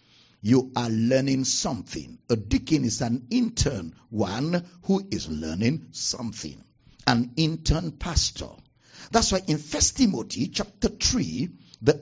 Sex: male